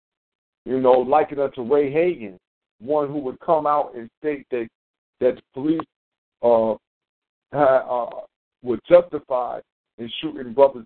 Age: 60-79